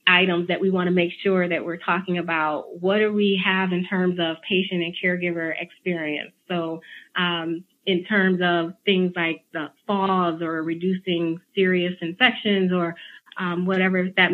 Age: 30-49